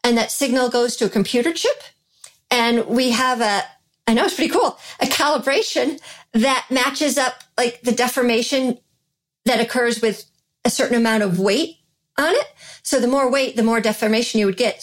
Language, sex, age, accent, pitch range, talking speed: English, female, 40-59, American, 210-250 Hz, 180 wpm